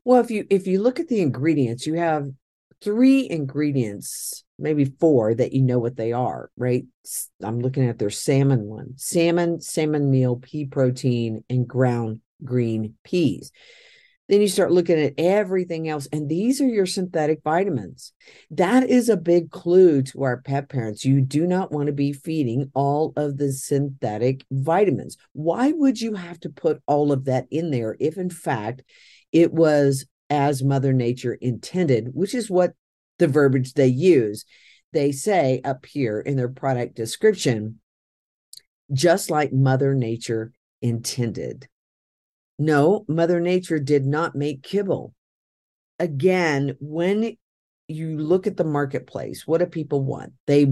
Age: 50-69